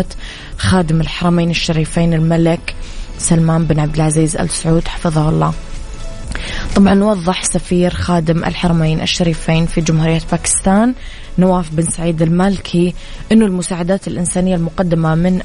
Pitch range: 160-180 Hz